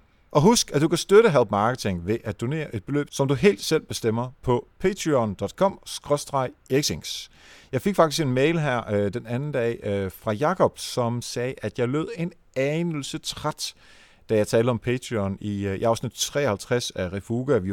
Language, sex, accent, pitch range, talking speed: Danish, male, native, 105-145 Hz, 190 wpm